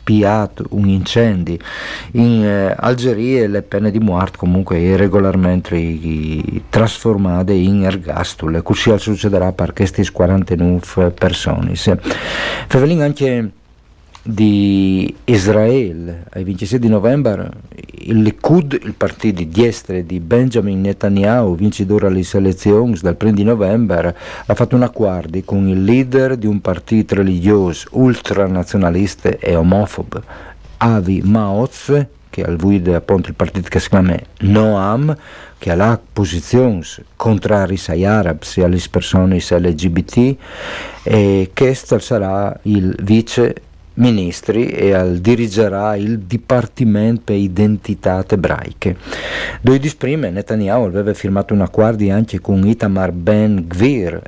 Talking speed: 115 wpm